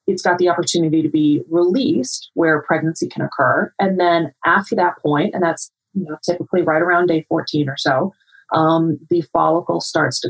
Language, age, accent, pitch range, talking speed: English, 30-49, American, 160-200 Hz, 175 wpm